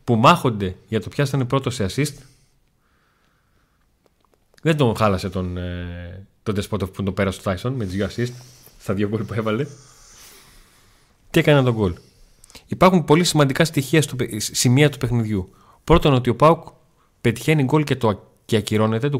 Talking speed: 160 wpm